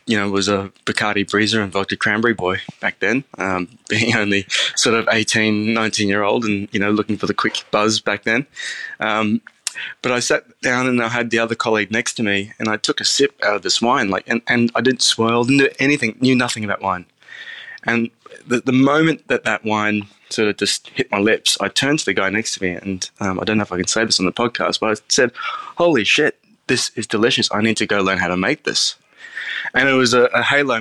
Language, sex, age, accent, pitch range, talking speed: English, male, 20-39, Australian, 100-115 Hz, 240 wpm